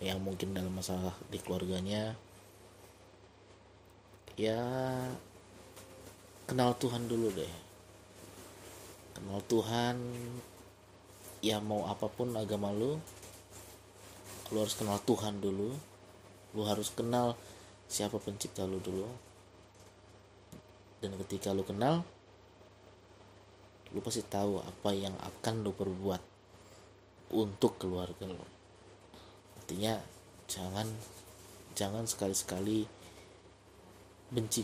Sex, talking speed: male, 85 wpm